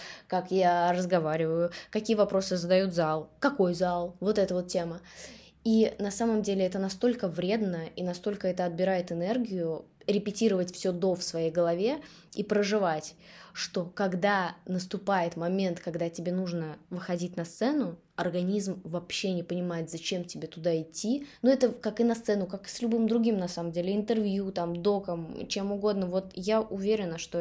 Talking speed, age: 160 wpm, 20-39